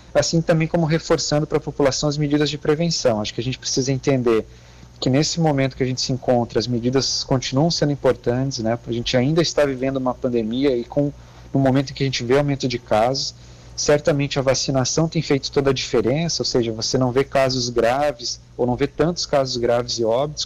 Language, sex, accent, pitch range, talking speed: Portuguese, male, Brazilian, 120-145 Hz, 210 wpm